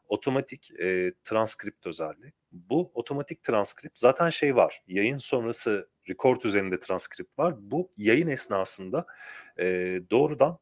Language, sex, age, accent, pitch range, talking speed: Turkish, male, 40-59, native, 100-140 Hz, 120 wpm